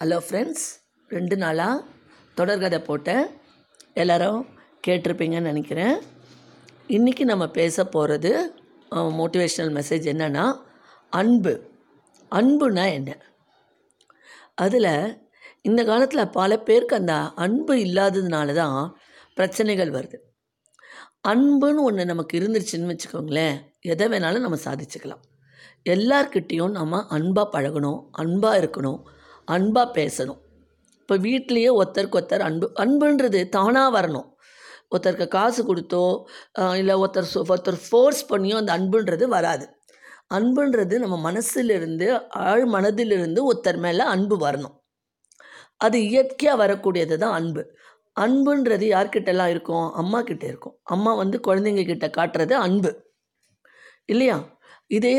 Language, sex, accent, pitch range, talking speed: Tamil, female, native, 170-240 Hz, 100 wpm